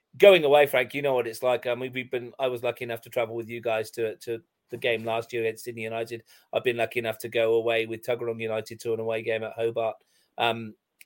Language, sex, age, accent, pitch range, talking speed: English, male, 30-49, British, 120-180 Hz, 260 wpm